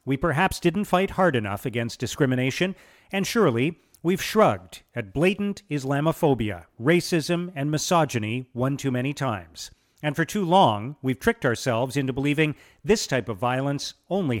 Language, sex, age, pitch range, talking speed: English, male, 40-59, 130-185 Hz, 150 wpm